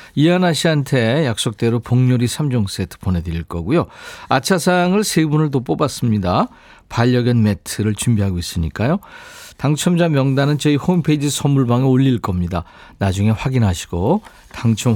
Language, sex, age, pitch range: Korean, male, 50-69, 105-160 Hz